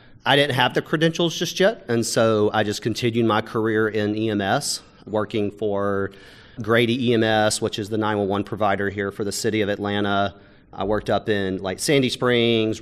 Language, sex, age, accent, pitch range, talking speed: English, male, 40-59, American, 100-120 Hz, 180 wpm